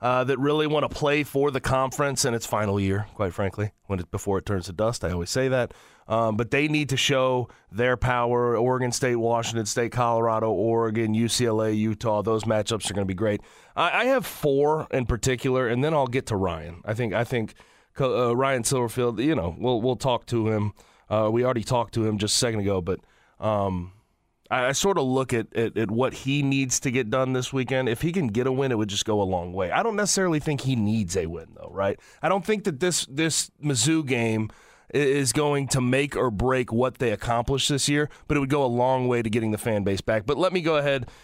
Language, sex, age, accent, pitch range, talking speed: English, male, 30-49, American, 110-140 Hz, 235 wpm